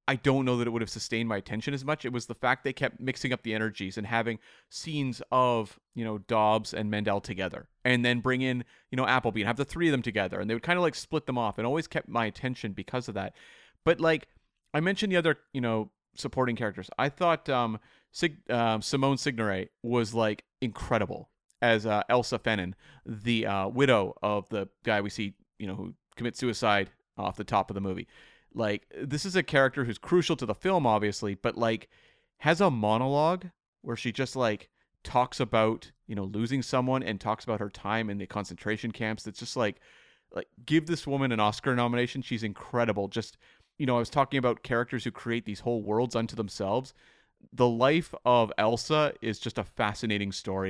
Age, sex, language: 30-49, male, English